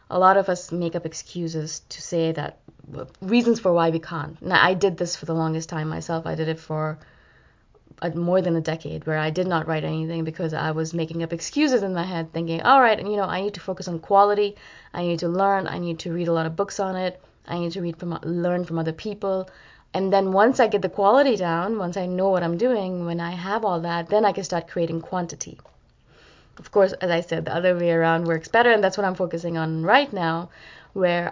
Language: English